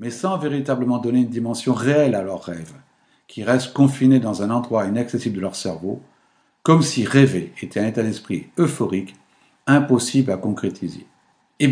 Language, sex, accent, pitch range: French, male, French, 110-150 Hz